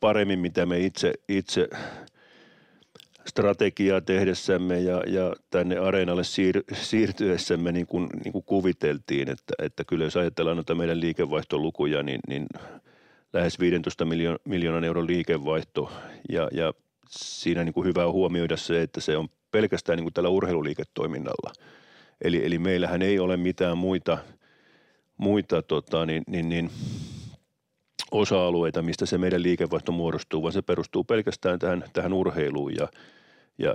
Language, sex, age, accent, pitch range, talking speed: Finnish, male, 40-59, native, 85-90 Hz, 140 wpm